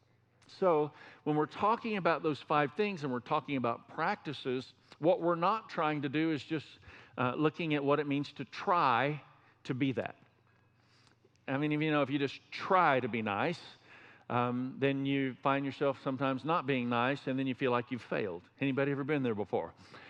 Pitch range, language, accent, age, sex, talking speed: 125-155 Hz, English, American, 50-69, male, 195 wpm